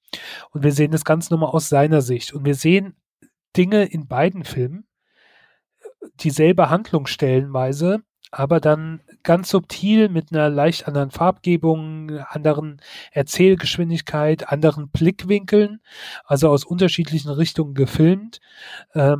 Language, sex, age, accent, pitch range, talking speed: German, male, 30-49, German, 135-160 Hz, 115 wpm